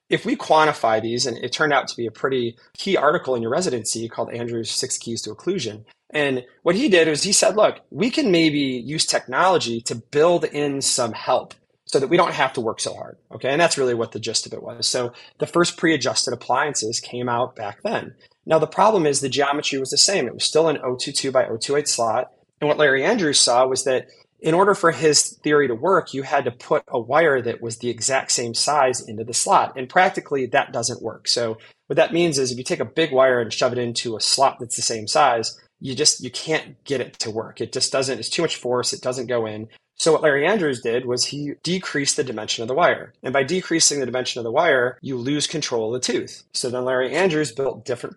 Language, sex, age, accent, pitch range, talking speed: English, male, 30-49, American, 115-150 Hz, 240 wpm